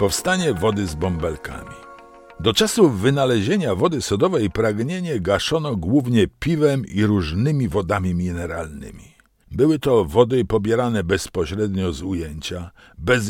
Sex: male